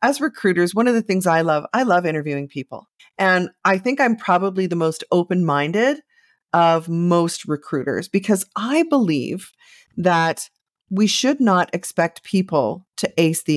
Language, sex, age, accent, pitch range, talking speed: English, female, 40-59, American, 155-210 Hz, 160 wpm